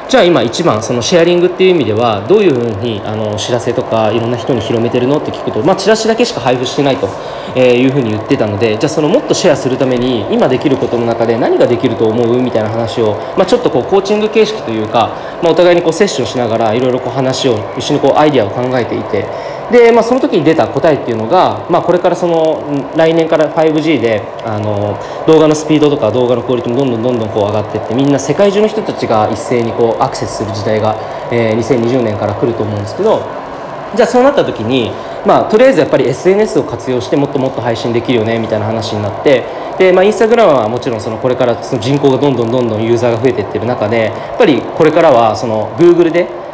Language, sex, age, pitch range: Japanese, male, 20-39, 115-160 Hz